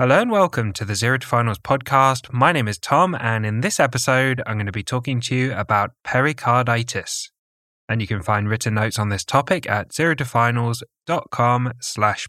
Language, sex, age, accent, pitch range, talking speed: English, male, 10-29, British, 105-140 Hz, 180 wpm